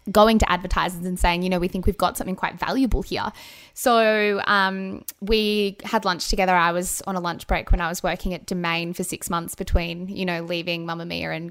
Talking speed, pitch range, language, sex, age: 225 wpm, 175-195 Hz, English, female, 10-29